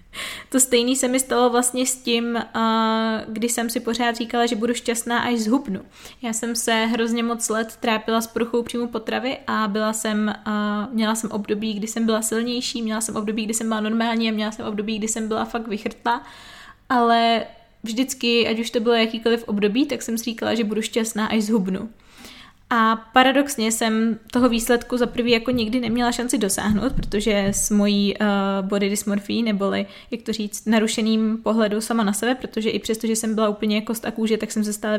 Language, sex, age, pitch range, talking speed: Czech, female, 20-39, 215-240 Hz, 195 wpm